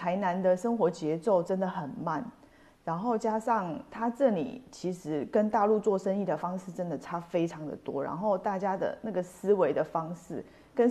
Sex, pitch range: female, 170-235 Hz